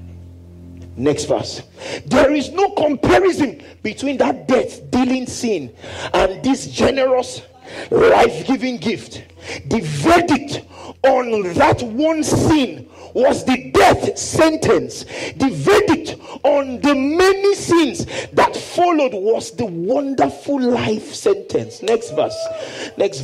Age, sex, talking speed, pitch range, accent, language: 50-69, male, 105 wpm, 250-345 Hz, Nigerian, English